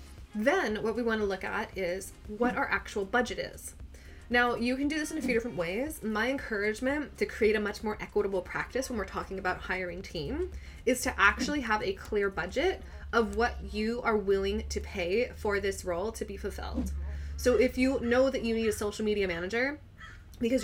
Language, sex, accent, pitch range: English, female, American, 195-245 Hz